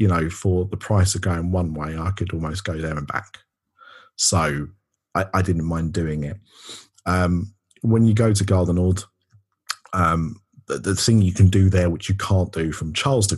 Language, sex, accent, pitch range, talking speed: English, male, British, 85-105 Hz, 200 wpm